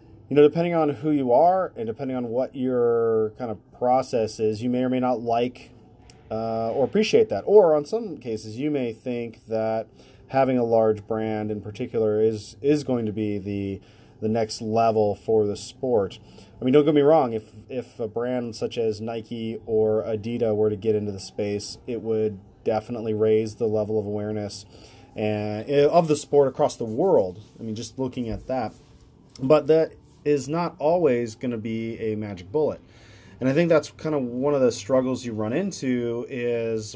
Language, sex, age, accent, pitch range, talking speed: English, male, 30-49, American, 110-130 Hz, 195 wpm